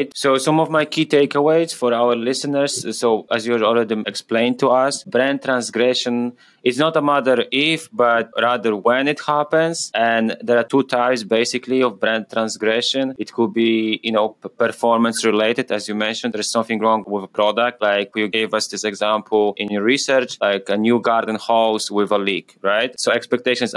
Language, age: English, 20-39